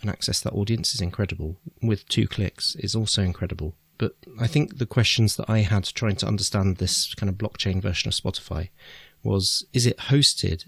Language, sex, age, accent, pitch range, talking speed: English, male, 30-49, British, 90-110 Hz, 190 wpm